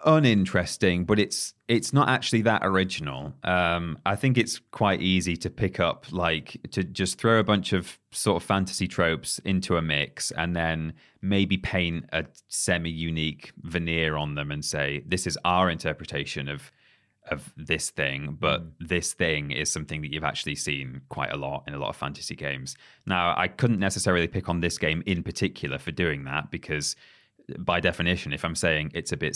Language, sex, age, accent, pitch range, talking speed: English, male, 20-39, British, 75-95 Hz, 185 wpm